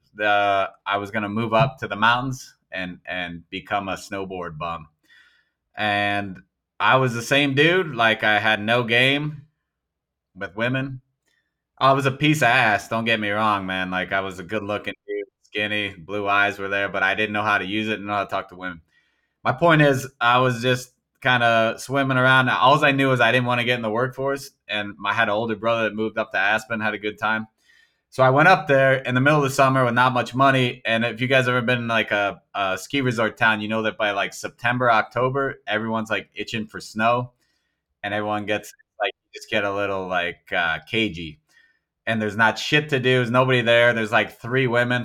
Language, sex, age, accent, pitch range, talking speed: English, male, 20-39, American, 105-130 Hz, 220 wpm